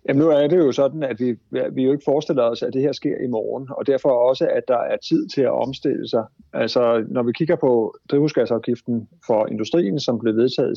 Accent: native